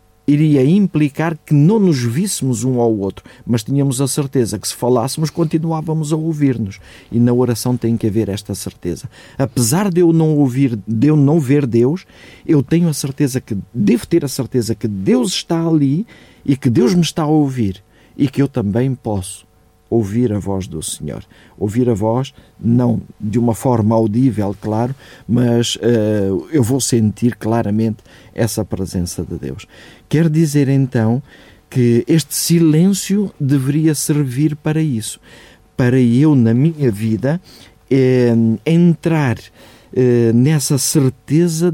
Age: 50-69